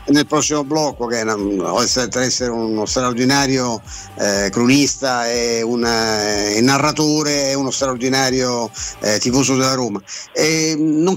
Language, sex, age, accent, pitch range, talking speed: Italian, male, 50-69, native, 130-155 Hz, 135 wpm